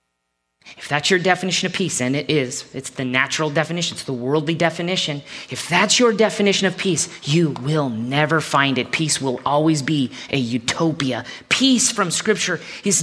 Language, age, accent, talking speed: English, 40-59, American, 175 wpm